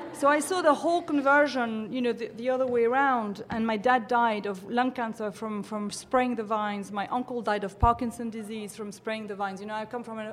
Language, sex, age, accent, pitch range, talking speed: English, female, 40-59, French, 200-245 Hz, 240 wpm